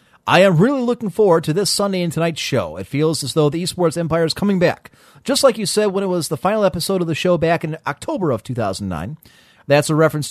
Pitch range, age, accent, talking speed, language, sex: 130-190 Hz, 30-49, American, 245 wpm, English, male